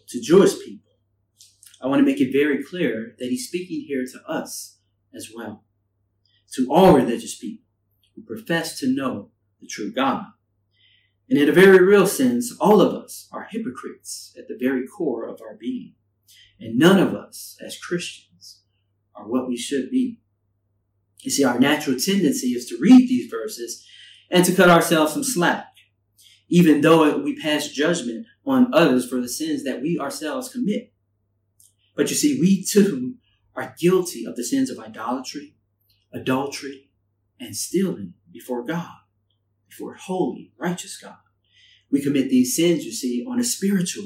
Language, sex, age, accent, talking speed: English, male, 30-49, American, 160 wpm